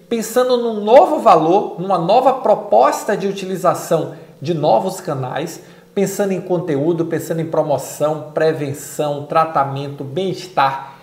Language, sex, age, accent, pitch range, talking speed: Portuguese, male, 50-69, Brazilian, 155-215 Hz, 115 wpm